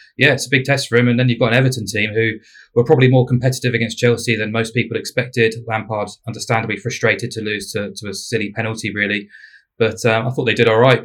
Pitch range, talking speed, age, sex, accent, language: 100-115 Hz, 240 wpm, 20-39, male, British, English